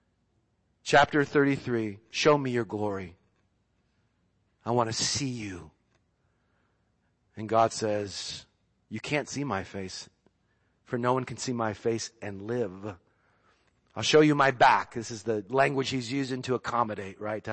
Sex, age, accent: male, 40-59, American